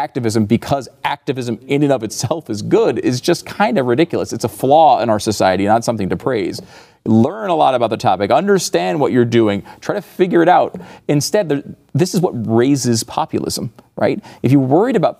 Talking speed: 195 wpm